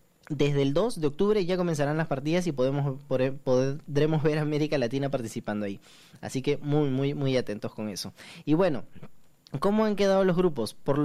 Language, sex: Spanish, male